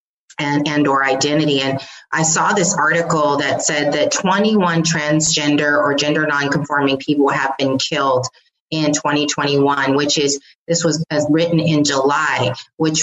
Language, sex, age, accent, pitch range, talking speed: English, female, 30-49, American, 145-165 Hz, 140 wpm